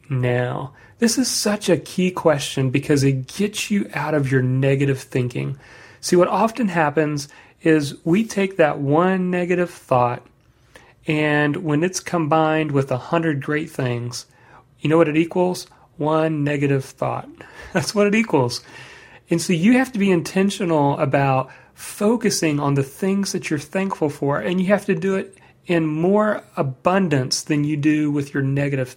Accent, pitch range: American, 135-180 Hz